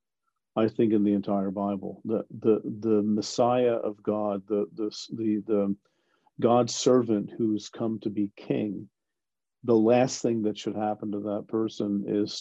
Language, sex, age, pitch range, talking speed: English, male, 50-69, 105-120 Hz, 160 wpm